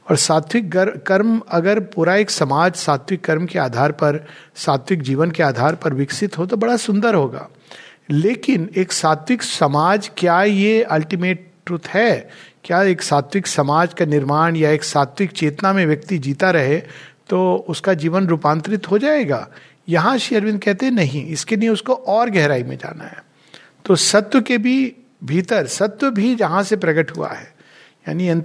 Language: Hindi